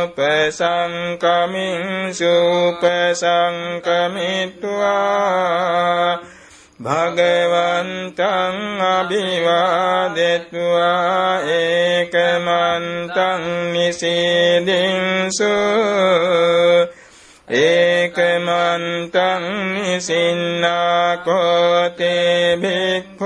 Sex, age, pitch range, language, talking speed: male, 60-79, 170-185 Hz, Vietnamese, 35 wpm